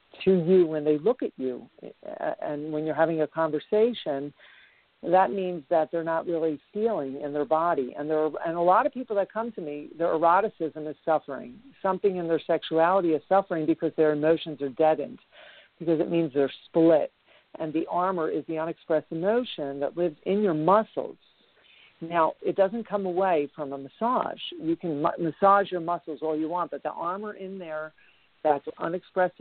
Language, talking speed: English, 185 wpm